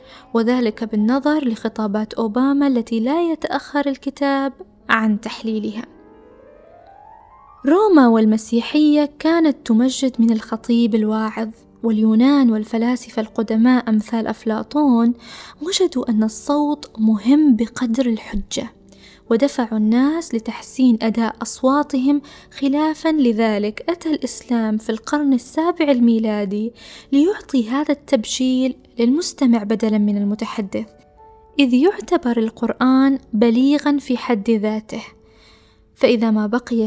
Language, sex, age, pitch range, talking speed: Arabic, female, 20-39, 225-280 Hz, 95 wpm